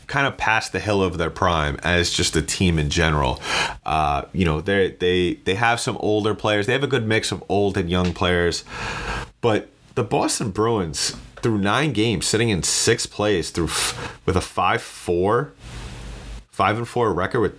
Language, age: English, 30-49